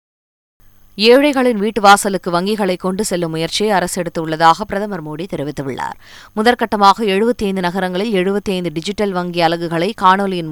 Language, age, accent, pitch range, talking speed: Tamil, 20-39, native, 160-195 Hz, 115 wpm